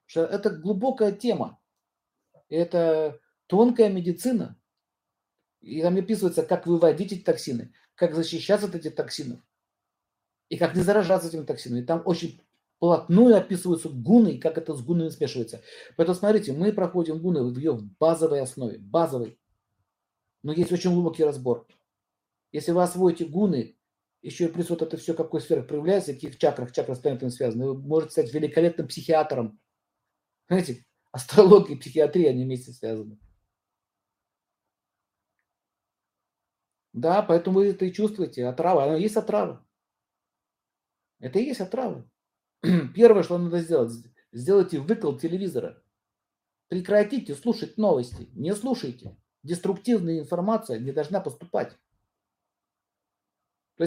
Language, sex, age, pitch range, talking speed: Russian, male, 50-69, 145-195 Hz, 125 wpm